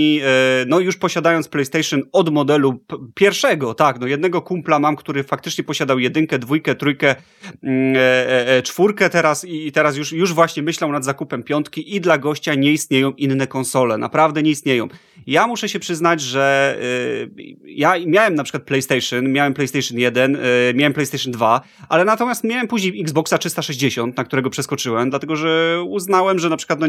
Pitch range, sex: 130-155 Hz, male